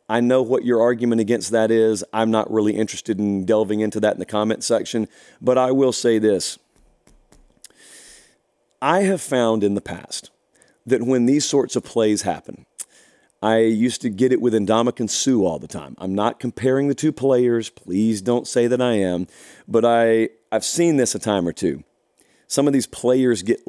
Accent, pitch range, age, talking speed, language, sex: American, 110-140 Hz, 40-59, 185 wpm, English, male